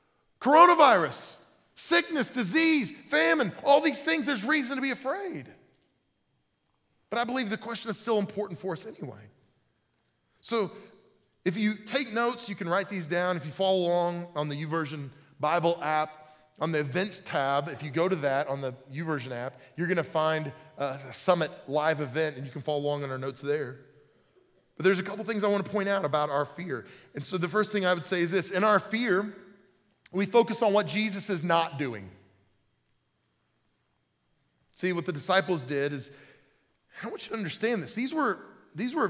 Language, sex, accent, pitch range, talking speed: English, male, American, 160-225 Hz, 180 wpm